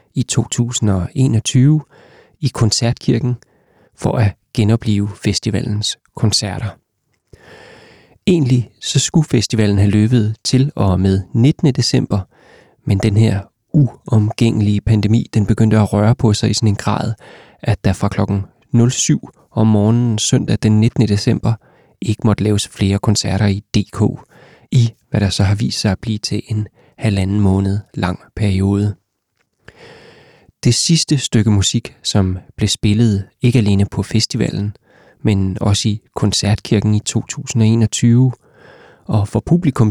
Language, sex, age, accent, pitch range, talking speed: English, male, 30-49, Danish, 105-120 Hz, 130 wpm